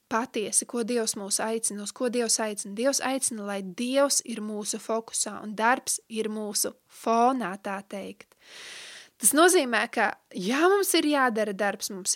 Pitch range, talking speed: 210-255 Hz, 160 wpm